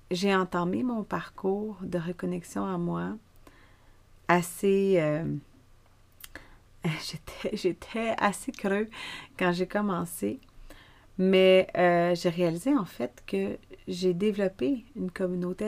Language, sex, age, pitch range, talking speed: French, female, 30-49, 170-195 Hz, 105 wpm